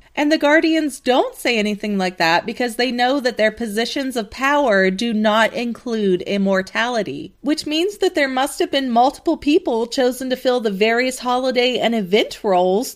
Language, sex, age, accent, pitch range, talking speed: English, female, 30-49, American, 200-255 Hz, 175 wpm